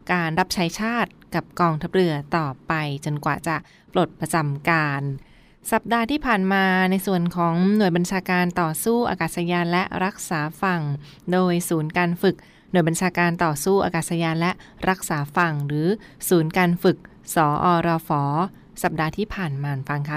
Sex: female